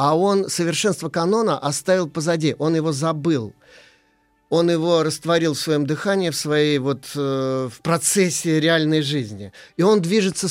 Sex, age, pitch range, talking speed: male, 30-49, 145-175 Hz, 135 wpm